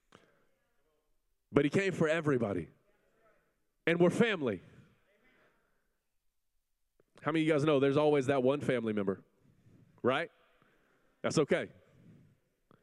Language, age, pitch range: English, 30-49, 130-180 Hz